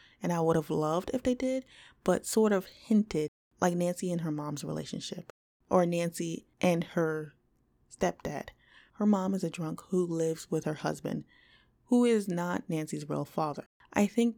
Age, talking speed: 20-39, 170 wpm